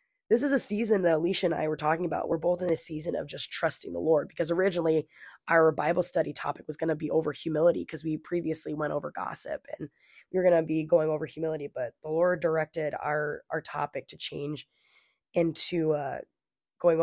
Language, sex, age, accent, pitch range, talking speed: English, female, 20-39, American, 160-190 Hz, 210 wpm